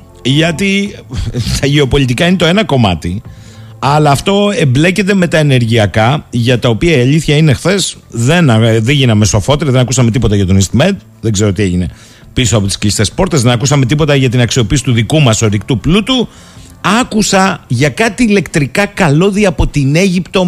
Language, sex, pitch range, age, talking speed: Greek, male, 110-180 Hz, 50-69, 170 wpm